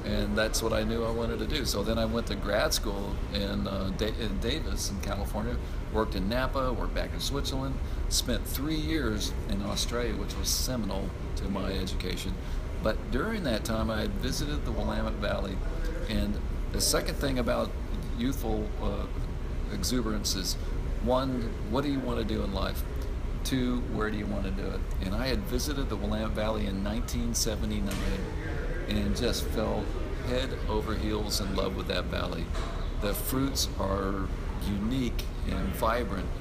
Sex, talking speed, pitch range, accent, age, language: male, 170 wpm, 85-110 Hz, American, 50-69, English